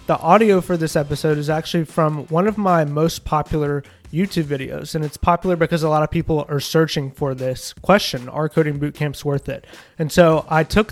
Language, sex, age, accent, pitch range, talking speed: English, male, 20-39, American, 150-175 Hz, 210 wpm